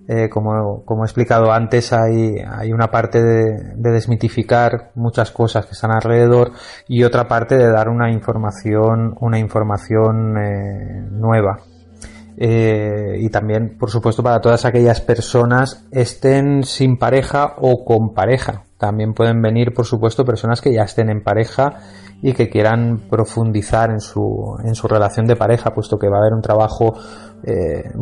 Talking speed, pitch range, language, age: 155 wpm, 105-115 Hz, Spanish, 30-49